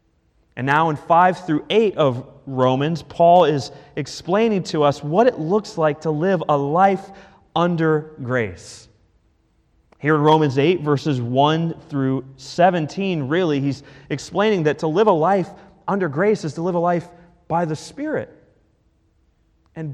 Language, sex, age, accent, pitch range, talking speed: English, male, 30-49, American, 120-175 Hz, 150 wpm